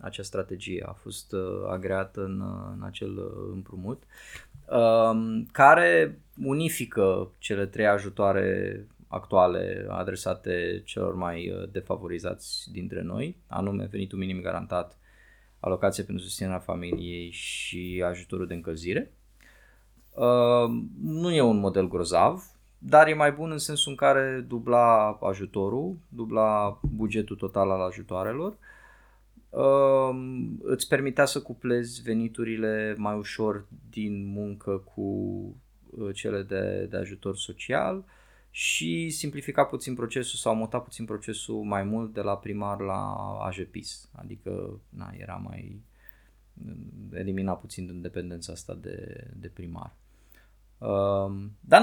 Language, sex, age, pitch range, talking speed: Romanian, male, 20-39, 95-120 Hz, 115 wpm